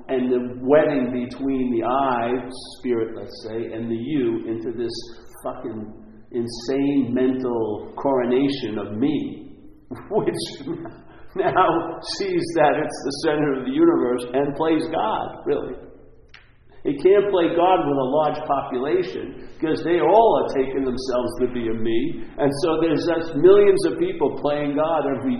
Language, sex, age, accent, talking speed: English, male, 50-69, American, 145 wpm